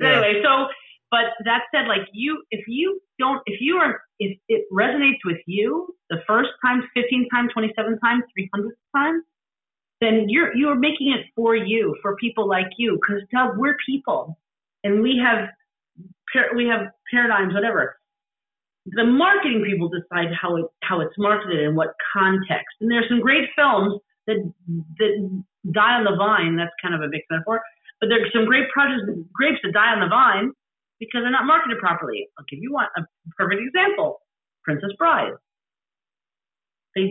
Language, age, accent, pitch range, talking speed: English, 40-59, American, 195-285 Hz, 170 wpm